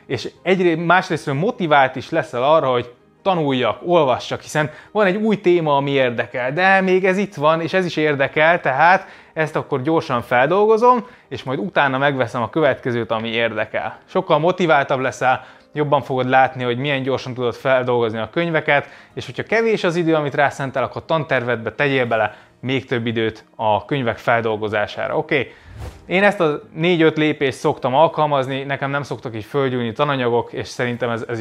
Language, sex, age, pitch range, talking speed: Hungarian, male, 20-39, 120-155 Hz, 165 wpm